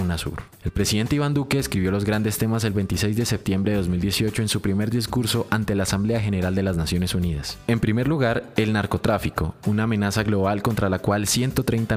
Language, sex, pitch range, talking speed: Spanish, male, 95-110 Hz, 190 wpm